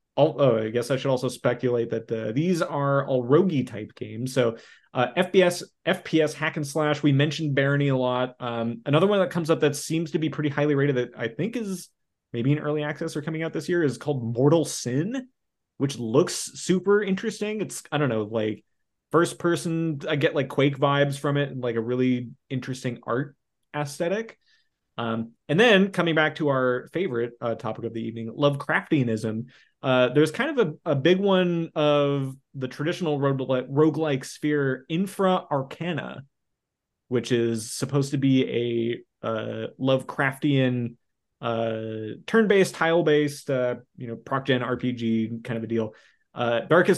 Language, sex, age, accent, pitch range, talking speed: English, male, 30-49, American, 120-155 Hz, 175 wpm